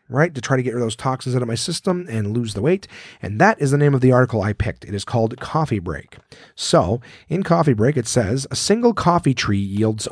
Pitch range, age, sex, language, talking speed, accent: 105-140 Hz, 40-59, male, English, 255 wpm, American